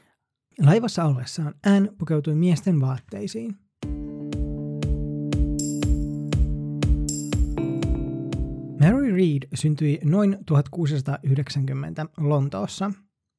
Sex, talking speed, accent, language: male, 55 wpm, native, Finnish